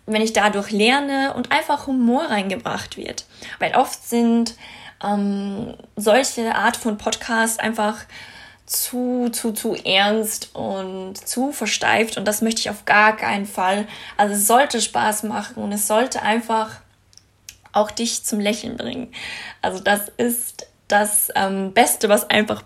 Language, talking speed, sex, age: German, 145 wpm, female, 20-39